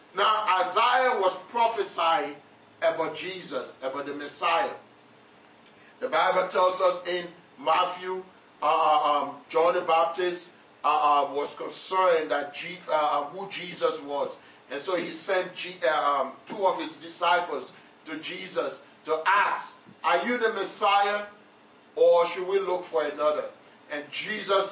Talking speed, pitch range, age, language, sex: 140 wpm, 160-215 Hz, 40-59, English, male